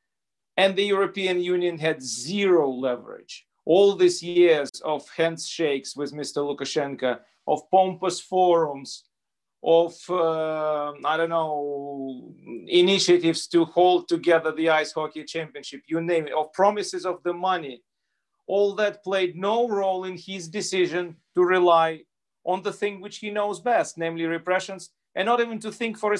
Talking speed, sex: 150 wpm, male